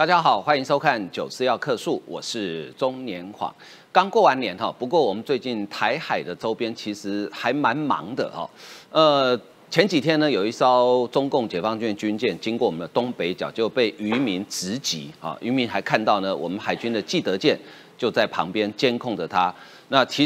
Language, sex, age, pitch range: Chinese, male, 40-59, 105-150 Hz